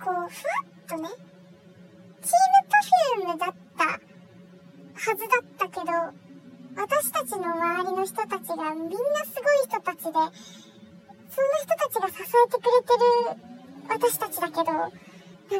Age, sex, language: 10-29, male, Japanese